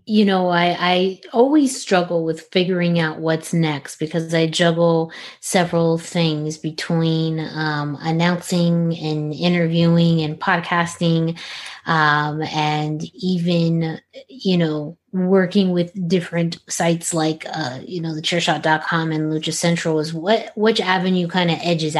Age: 20-39